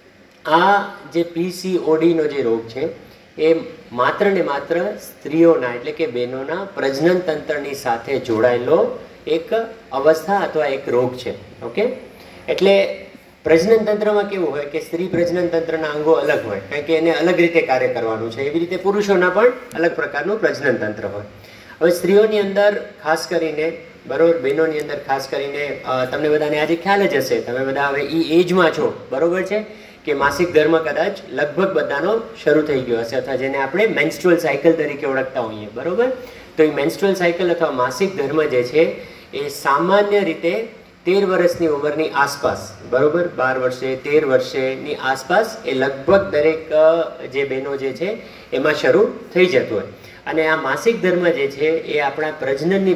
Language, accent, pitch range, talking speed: Gujarati, native, 140-185 Hz, 55 wpm